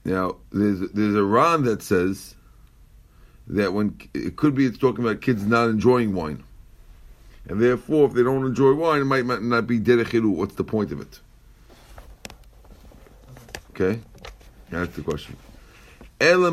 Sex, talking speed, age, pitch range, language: male, 135 wpm, 50-69, 110-140 Hz, English